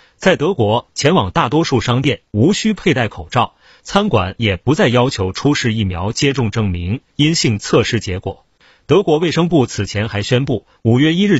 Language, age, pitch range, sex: Chinese, 30-49, 100-140 Hz, male